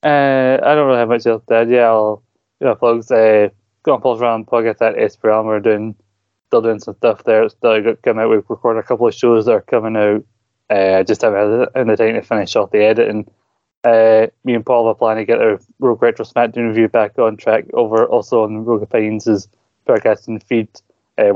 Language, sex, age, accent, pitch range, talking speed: English, male, 20-39, British, 110-120 Hz, 220 wpm